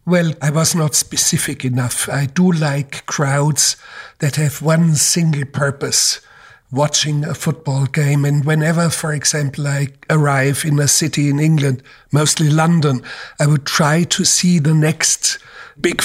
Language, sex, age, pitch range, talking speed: English, male, 60-79, 140-160 Hz, 150 wpm